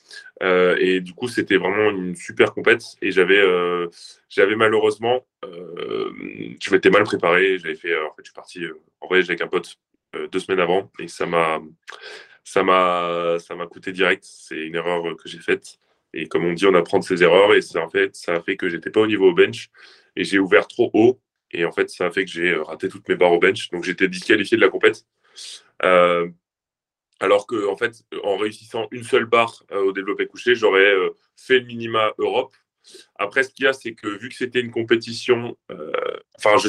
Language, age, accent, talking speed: French, 20-39, French, 220 wpm